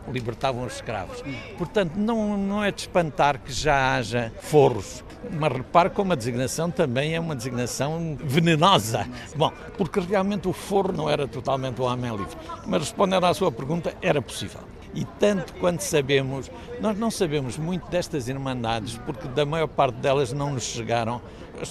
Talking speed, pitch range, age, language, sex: 165 wpm, 130-180 Hz, 60-79, Portuguese, male